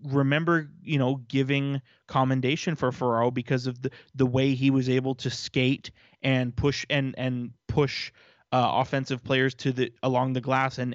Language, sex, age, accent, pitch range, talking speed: English, male, 20-39, American, 120-135 Hz, 170 wpm